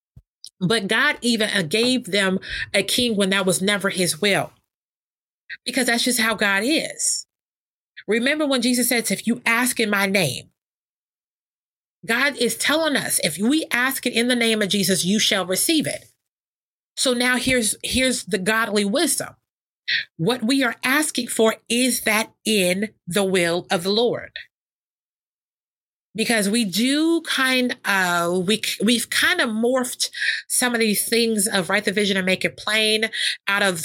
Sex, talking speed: female, 160 wpm